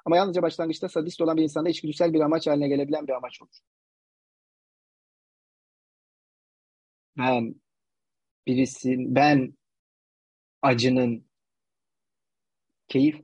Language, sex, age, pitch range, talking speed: Turkish, male, 30-49, 120-140 Hz, 90 wpm